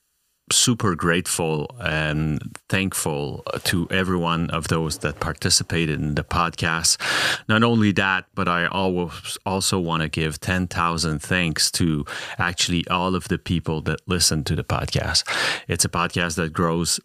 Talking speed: 145 wpm